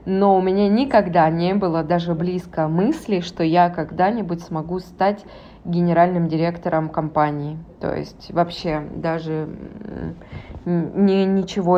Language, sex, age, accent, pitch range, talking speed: Russian, female, 20-39, native, 165-190 Hz, 110 wpm